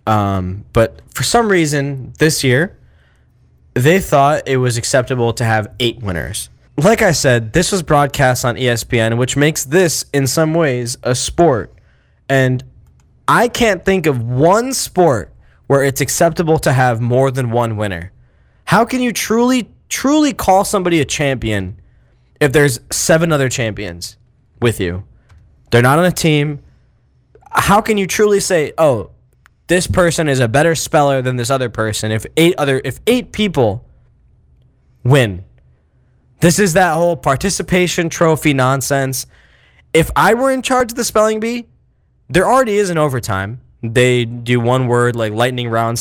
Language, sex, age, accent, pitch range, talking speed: English, male, 10-29, American, 120-190 Hz, 155 wpm